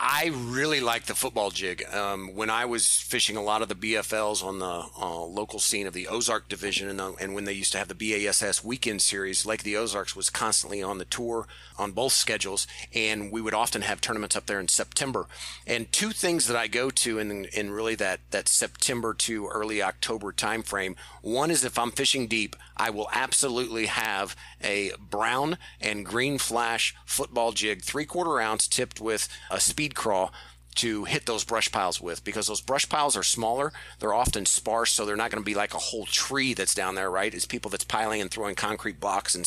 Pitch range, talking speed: 100-120 Hz, 210 wpm